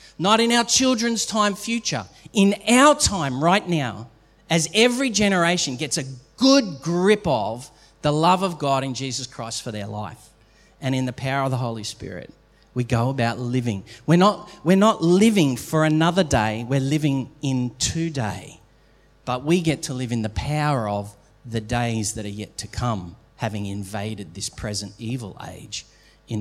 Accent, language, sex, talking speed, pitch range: Australian, English, male, 175 wpm, 115-180 Hz